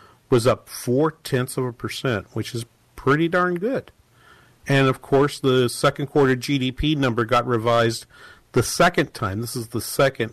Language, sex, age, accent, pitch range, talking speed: English, male, 50-69, American, 115-145 Hz, 170 wpm